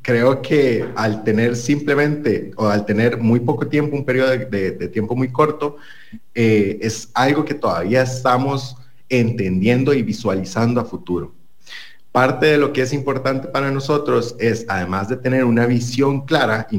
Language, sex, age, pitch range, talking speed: English, male, 30-49, 110-140 Hz, 160 wpm